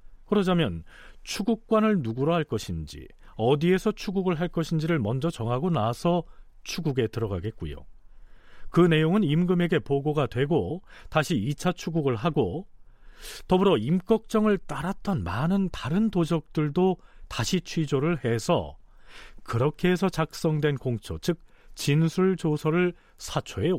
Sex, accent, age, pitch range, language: male, native, 40-59, 110-175 Hz, Korean